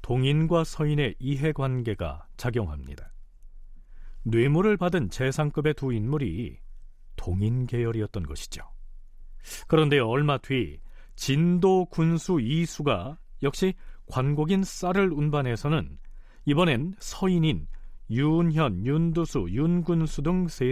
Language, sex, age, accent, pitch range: Korean, male, 40-59, native, 95-160 Hz